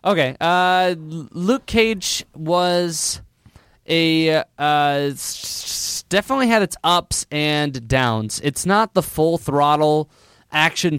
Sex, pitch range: male, 135-170 Hz